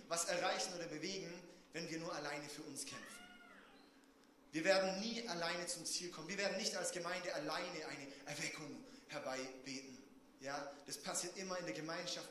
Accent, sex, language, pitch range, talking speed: German, male, German, 170-240 Hz, 165 wpm